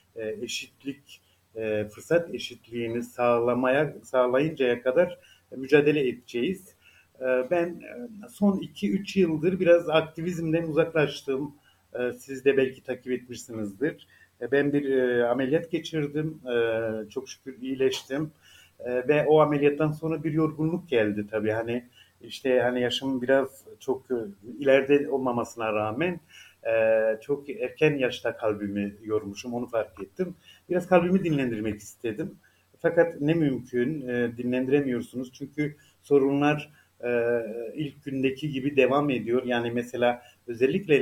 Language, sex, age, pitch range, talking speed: Turkish, male, 50-69, 115-150 Hz, 115 wpm